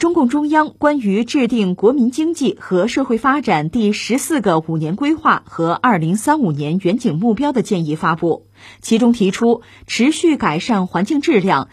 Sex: female